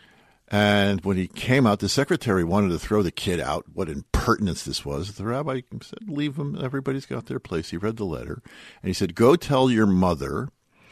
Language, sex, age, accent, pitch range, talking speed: English, male, 50-69, American, 75-110 Hz, 205 wpm